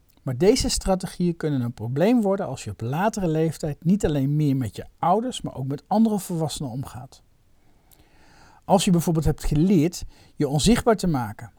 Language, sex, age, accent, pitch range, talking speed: Dutch, male, 50-69, Dutch, 120-185 Hz, 170 wpm